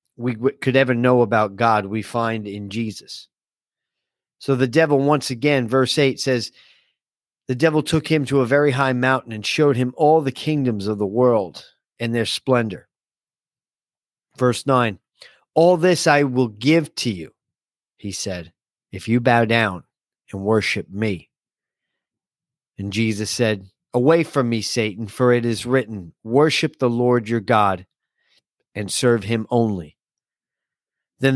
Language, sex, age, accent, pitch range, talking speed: English, male, 40-59, American, 110-145 Hz, 150 wpm